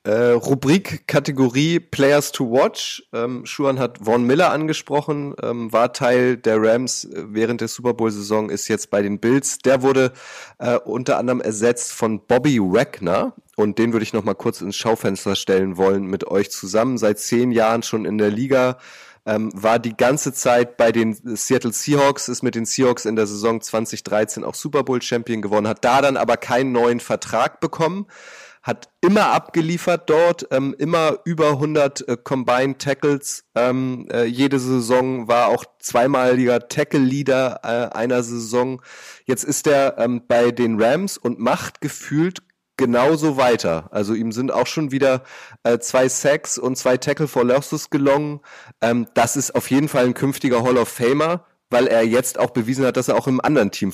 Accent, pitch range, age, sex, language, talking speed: German, 115-140 Hz, 30-49, male, German, 175 wpm